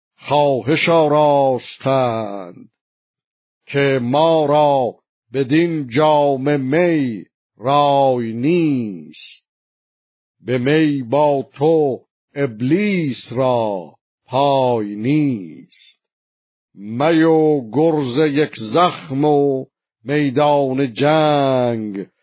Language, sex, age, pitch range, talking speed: Persian, male, 60-79, 120-150 Hz, 70 wpm